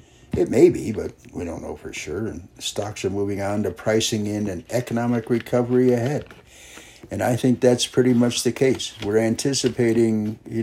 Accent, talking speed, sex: American, 180 wpm, male